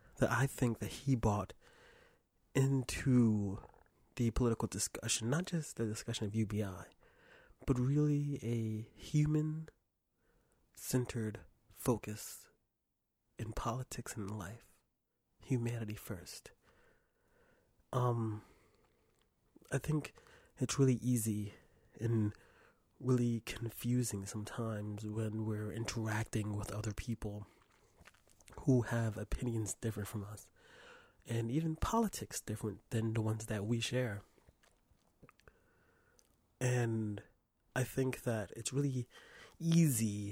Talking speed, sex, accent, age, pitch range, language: 100 wpm, male, American, 30-49, 105-135 Hz, English